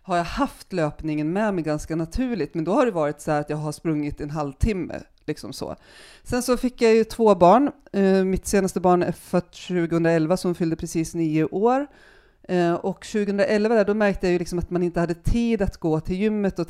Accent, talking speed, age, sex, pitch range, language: native, 215 wpm, 40-59, female, 155-195 Hz, Swedish